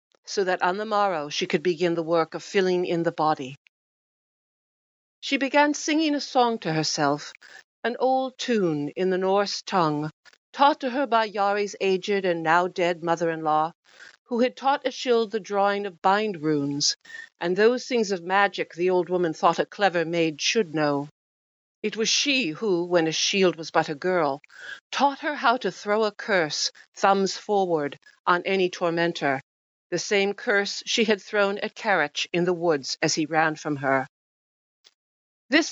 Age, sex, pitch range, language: 60-79, female, 165-225 Hz, English